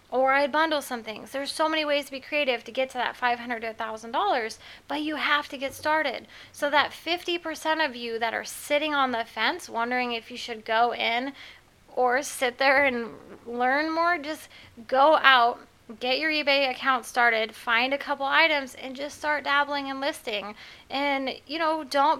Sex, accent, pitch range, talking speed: female, American, 235-285 Hz, 190 wpm